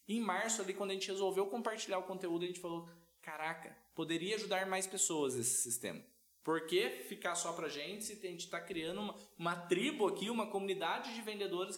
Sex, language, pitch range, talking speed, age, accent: male, Portuguese, 165-210 Hz, 200 wpm, 20-39, Brazilian